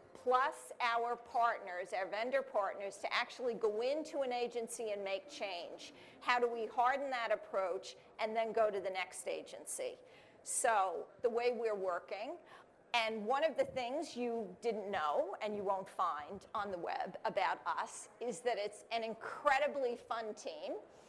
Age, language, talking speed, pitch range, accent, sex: 40-59, English, 160 wpm, 225-270 Hz, American, female